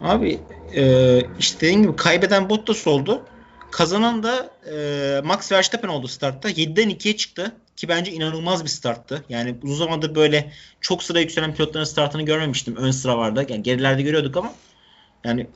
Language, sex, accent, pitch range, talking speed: Turkish, male, native, 140-180 Hz, 150 wpm